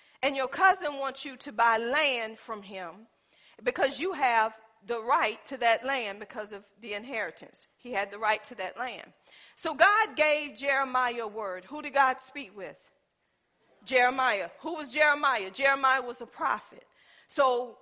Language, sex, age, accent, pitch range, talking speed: English, female, 50-69, American, 250-350 Hz, 165 wpm